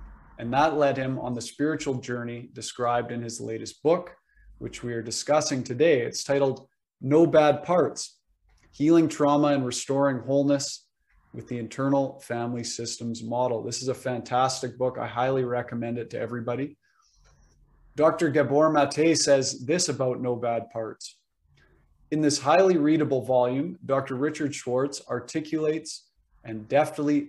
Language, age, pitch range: English, 20-39, 115-140 Hz